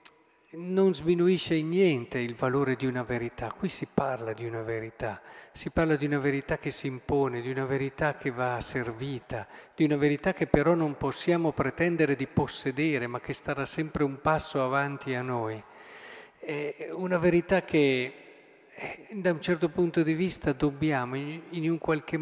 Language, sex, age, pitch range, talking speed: Italian, male, 50-69, 130-175 Hz, 165 wpm